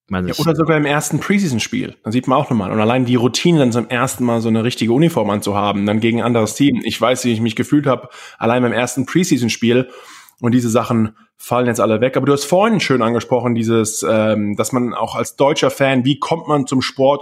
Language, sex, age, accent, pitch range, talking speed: German, male, 20-39, German, 115-140 Hz, 225 wpm